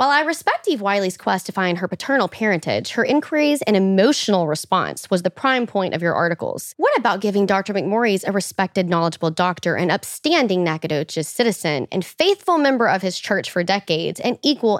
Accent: American